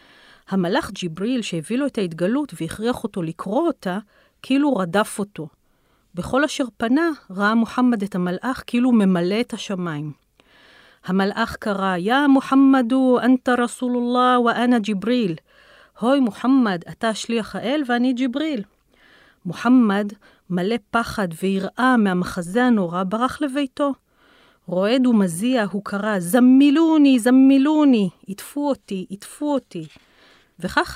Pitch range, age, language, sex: 180-250 Hz, 40-59, Hebrew, female